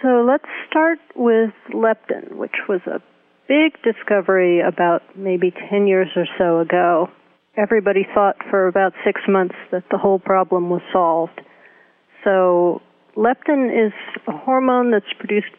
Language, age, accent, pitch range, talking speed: English, 40-59, American, 175-205 Hz, 140 wpm